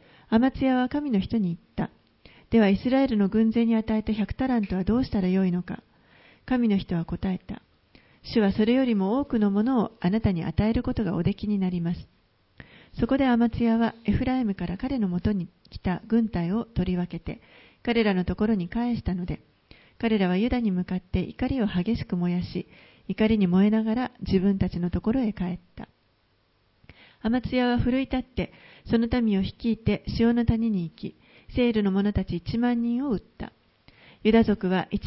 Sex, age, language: female, 40-59, Japanese